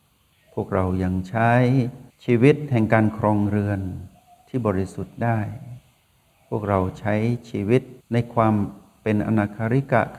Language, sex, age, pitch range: Thai, male, 60-79, 100-120 Hz